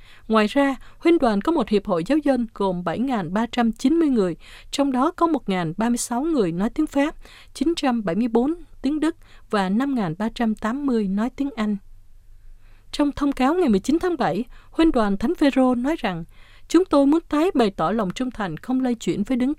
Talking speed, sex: 175 wpm, female